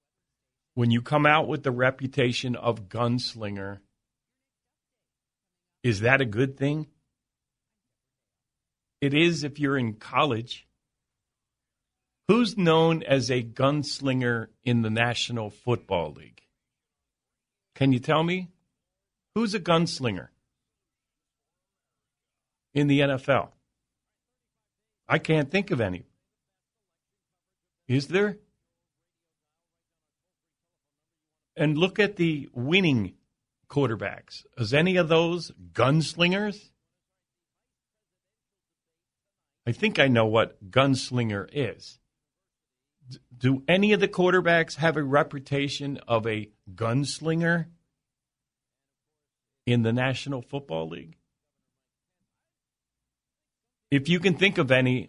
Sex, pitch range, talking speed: male, 125-160 Hz, 95 wpm